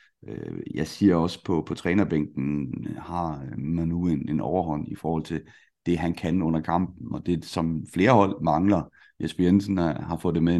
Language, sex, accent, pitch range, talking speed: Danish, male, native, 80-90 Hz, 185 wpm